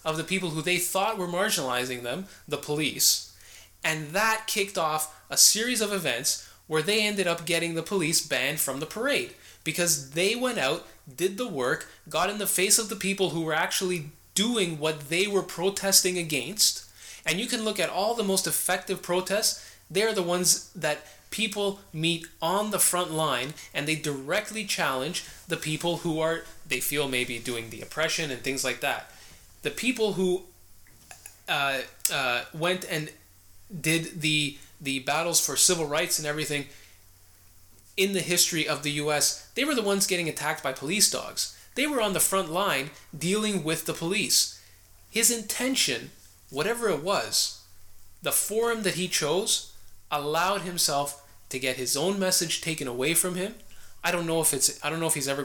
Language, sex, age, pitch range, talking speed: English, male, 20-39, 140-190 Hz, 175 wpm